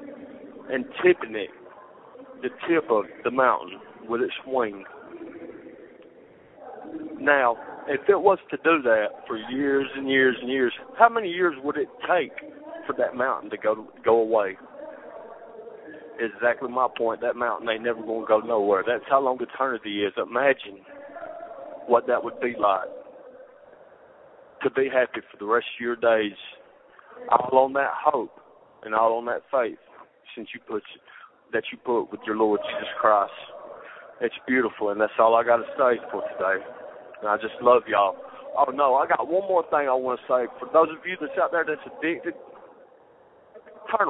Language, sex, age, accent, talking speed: English, male, 40-59, American, 170 wpm